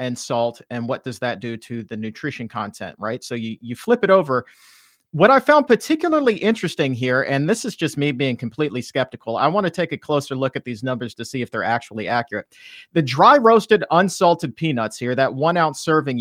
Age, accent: 40-59, American